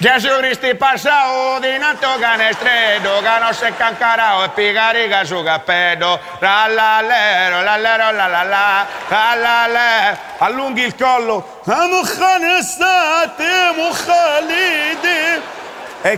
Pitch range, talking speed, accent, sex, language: 180-235 Hz, 75 wpm, native, male, Italian